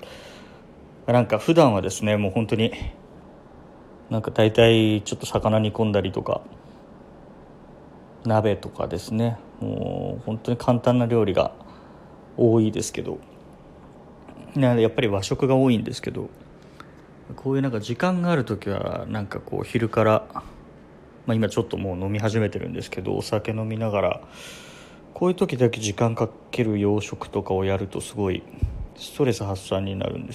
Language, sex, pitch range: Japanese, male, 105-130 Hz